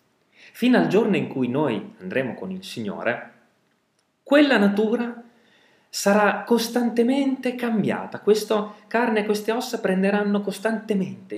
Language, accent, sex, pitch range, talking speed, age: Italian, native, male, 165-225 Hz, 115 wpm, 30-49